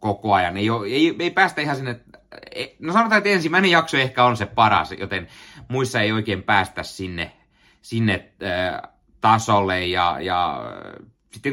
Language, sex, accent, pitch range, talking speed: Finnish, male, native, 90-115 Hz, 155 wpm